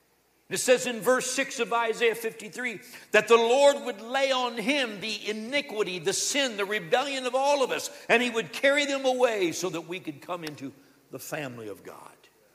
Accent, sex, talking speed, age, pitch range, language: American, male, 195 wpm, 60-79, 140-235 Hz, English